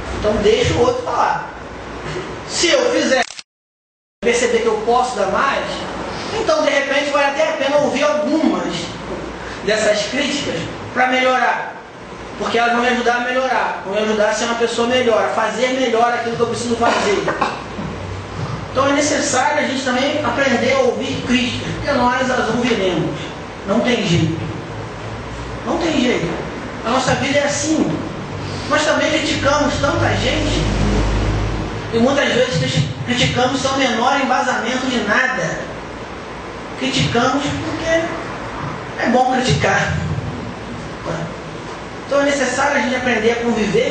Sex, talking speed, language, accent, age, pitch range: male, 140 wpm, Portuguese, Brazilian, 20-39, 180-265 Hz